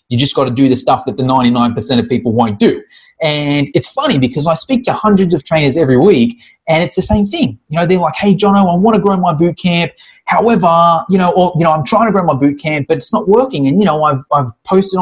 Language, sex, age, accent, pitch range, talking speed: English, male, 30-49, Australian, 145-205 Hz, 270 wpm